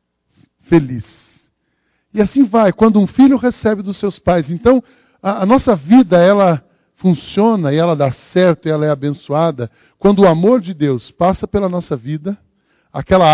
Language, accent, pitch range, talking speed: Portuguese, Brazilian, 155-210 Hz, 160 wpm